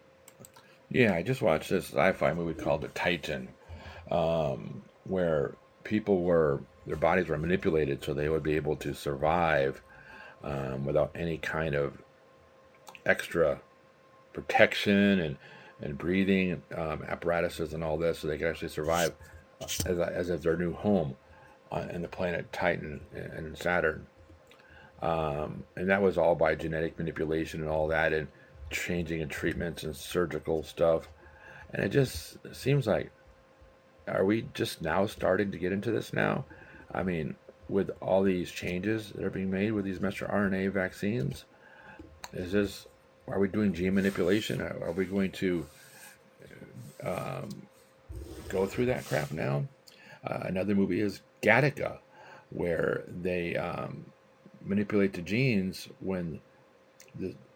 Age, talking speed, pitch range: 50-69, 140 wpm, 80-100 Hz